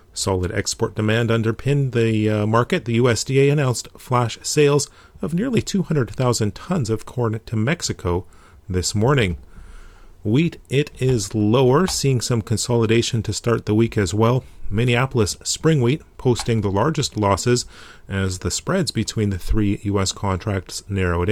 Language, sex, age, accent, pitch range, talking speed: English, male, 40-59, American, 100-130 Hz, 145 wpm